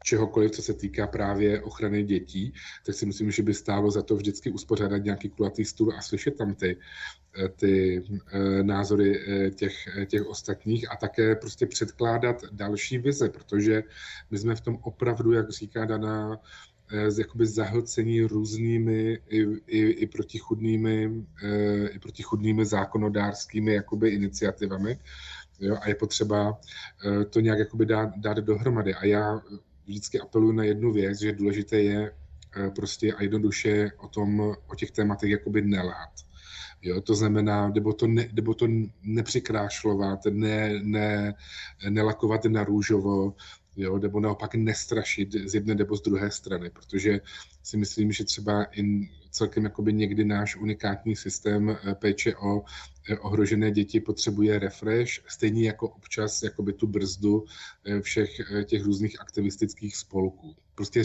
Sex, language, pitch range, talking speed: male, Czech, 100-110 Hz, 135 wpm